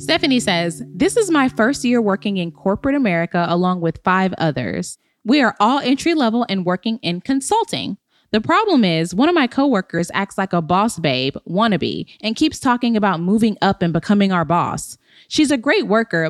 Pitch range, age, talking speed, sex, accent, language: 185-250 Hz, 20-39, 190 wpm, female, American, English